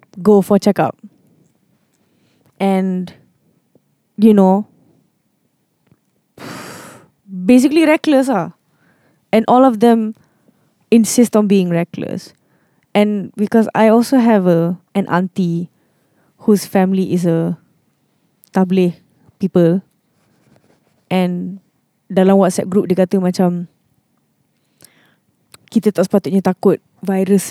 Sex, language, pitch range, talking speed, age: female, English, 180-215 Hz, 95 wpm, 20-39